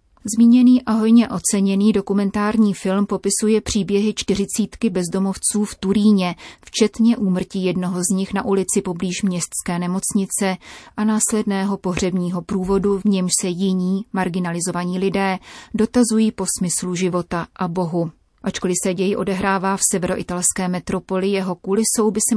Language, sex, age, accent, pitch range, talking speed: Czech, female, 30-49, native, 185-215 Hz, 130 wpm